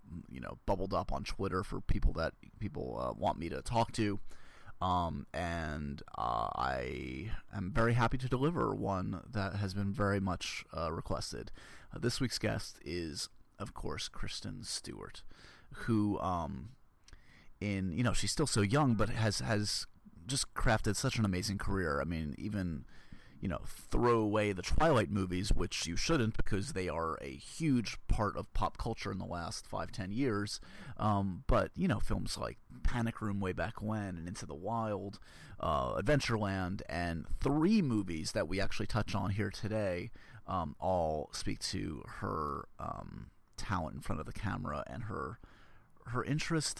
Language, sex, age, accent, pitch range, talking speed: English, male, 30-49, American, 90-115 Hz, 170 wpm